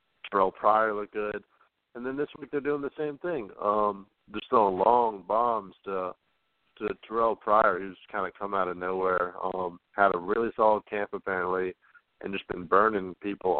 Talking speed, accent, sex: 180 wpm, American, male